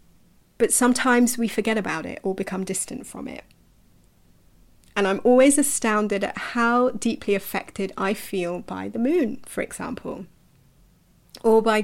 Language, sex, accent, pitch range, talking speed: English, female, British, 185-230 Hz, 140 wpm